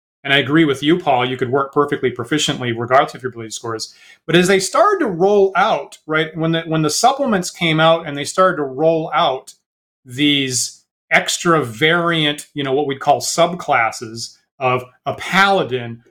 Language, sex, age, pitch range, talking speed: English, male, 30-49, 135-175 Hz, 185 wpm